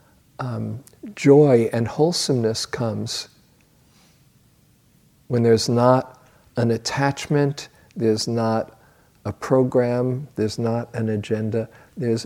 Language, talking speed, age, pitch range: English, 95 wpm, 50-69, 110-130 Hz